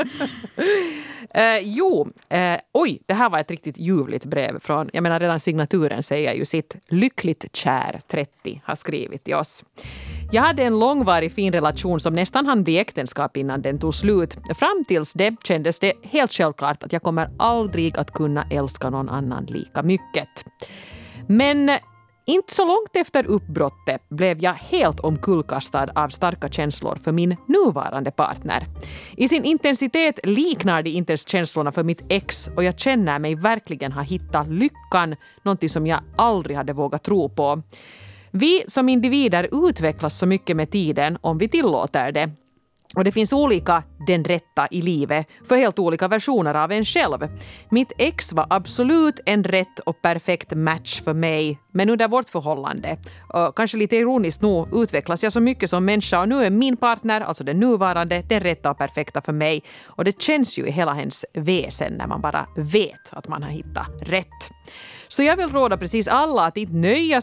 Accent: Finnish